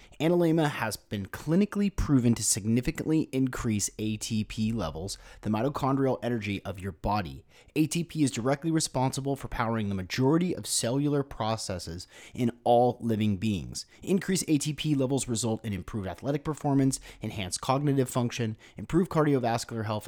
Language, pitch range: English, 105-140 Hz